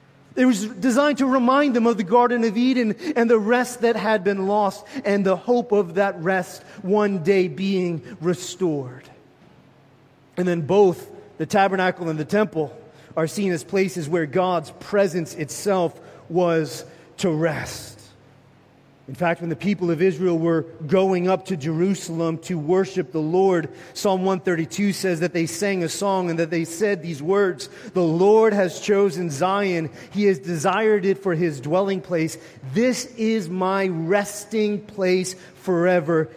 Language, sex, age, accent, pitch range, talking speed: English, male, 30-49, American, 160-195 Hz, 160 wpm